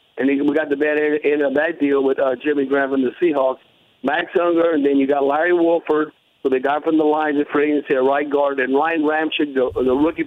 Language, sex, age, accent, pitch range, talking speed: English, male, 50-69, American, 140-170 Hz, 245 wpm